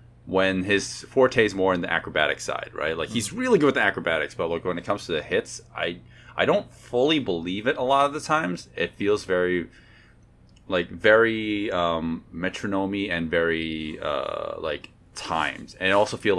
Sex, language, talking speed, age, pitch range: male, English, 190 wpm, 30-49, 85-120 Hz